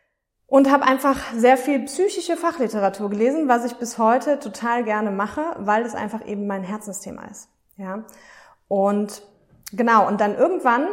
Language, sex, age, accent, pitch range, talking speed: German, female, 20-39, German, 200-240 Hz, 155 wpm